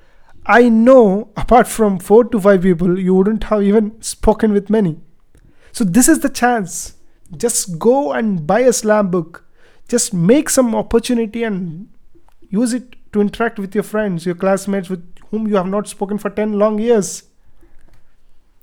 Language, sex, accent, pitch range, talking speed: Hindi, male, native, 170-220 Hz, 165 wpm